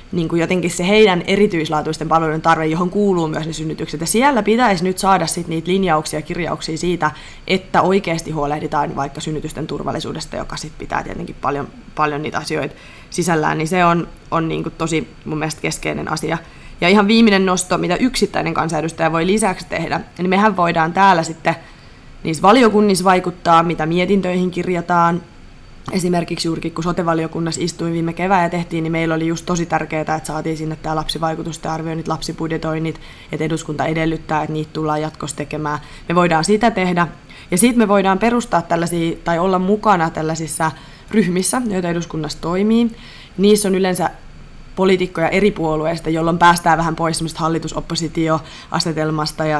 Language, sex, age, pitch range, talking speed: Finnish, female, 20-39, 160-185 Hz, 160 wpm